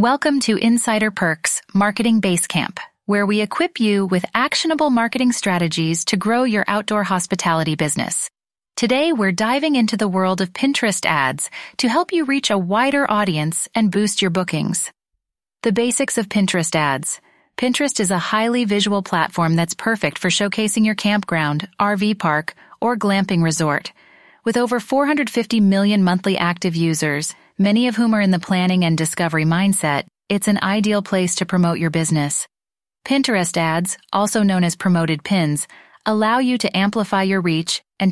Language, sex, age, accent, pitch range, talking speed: English, female, 30-49, American, 180-240 Hz, 160 wpm